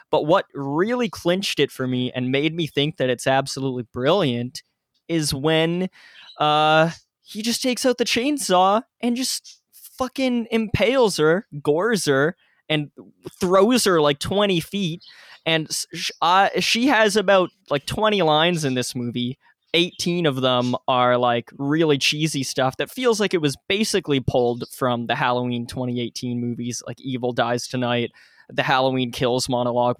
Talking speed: 150 wpm